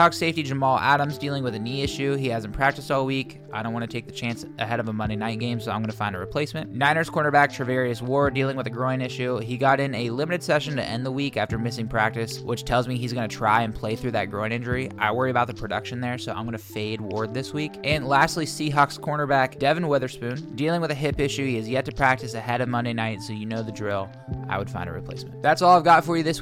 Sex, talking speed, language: male, 270 wpm, English